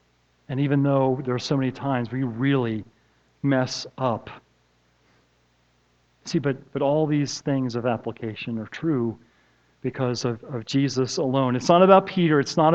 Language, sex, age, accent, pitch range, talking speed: English, male, 40-59, American, 130-175 Hz, 155 wpm